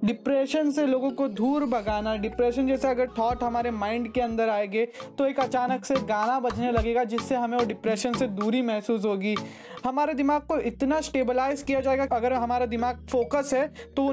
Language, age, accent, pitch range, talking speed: Hindi, 20-39, native, 225-270 Hz, 190 wpm